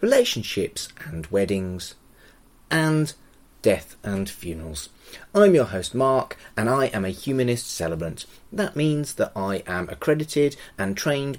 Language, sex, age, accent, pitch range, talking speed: English, male, 30-49, British, 90-140 Hz, 130 wpm